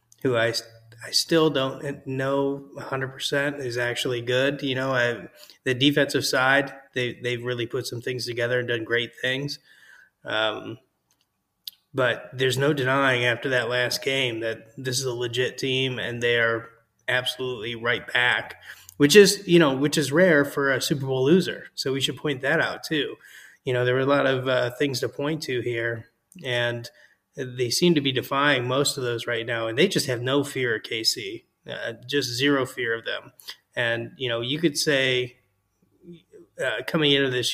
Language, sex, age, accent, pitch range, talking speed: English, male, 30-49, American, 120-140 Hz, 185 wpm